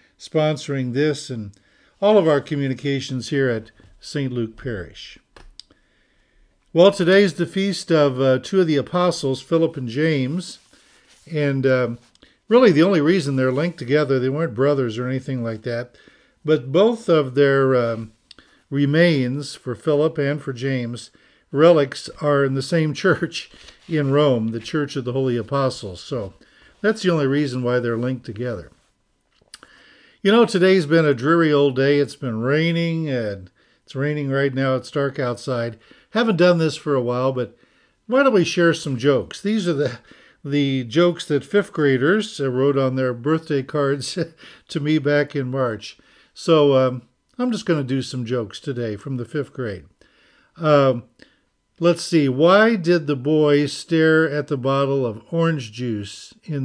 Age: 50-69